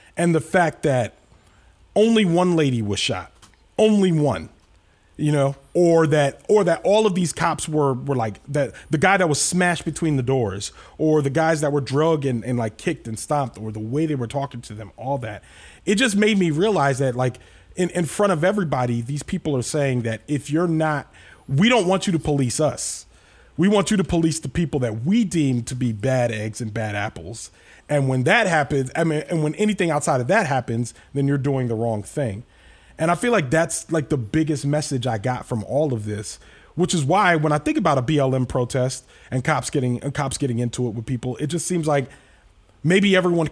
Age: 30-49